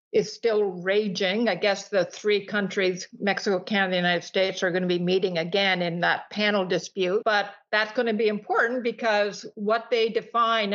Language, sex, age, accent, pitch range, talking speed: English, female, 50-69, American, 185-215 Hz, 185 wpm